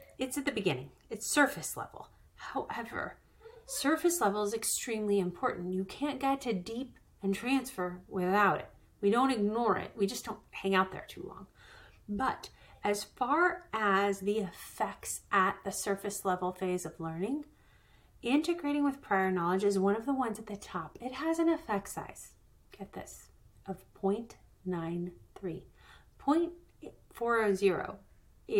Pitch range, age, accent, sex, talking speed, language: 185-245 Hz, 30-49, American, female, 145 wpm, English